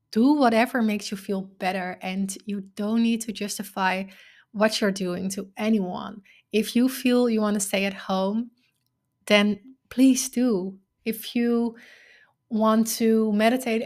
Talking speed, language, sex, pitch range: 145 wpm, English, female, 200-235 Hz